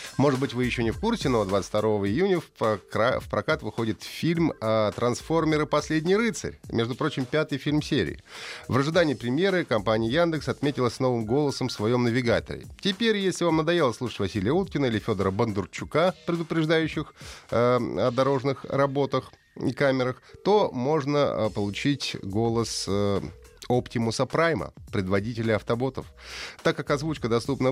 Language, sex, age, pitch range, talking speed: Russian, male, 30-49, 100-145 Hz, 135 wpm